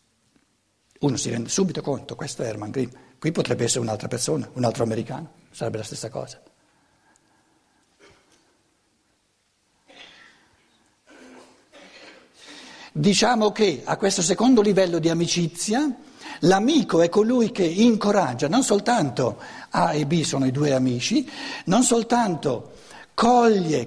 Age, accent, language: 60-79, native, Italian